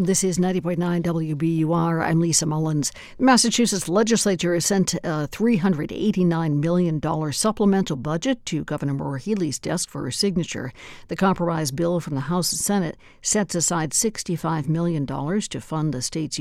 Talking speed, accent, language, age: 150 wpm, American, English, 60-79